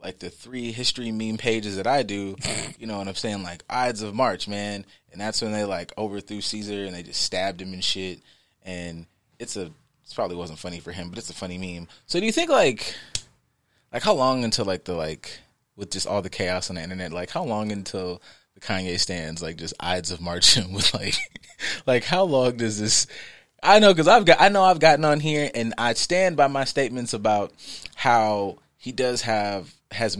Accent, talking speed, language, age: American, 220 wpm, English, 20-39